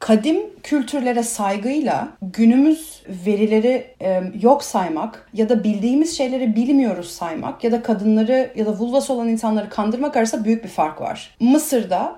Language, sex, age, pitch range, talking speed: Turkish, female, 40-59, 200-245 Hz, 140 wpm